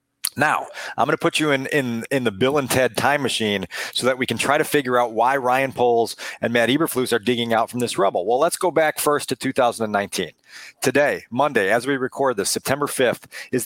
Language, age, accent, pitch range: English, 40-59, American, 120-150 Hz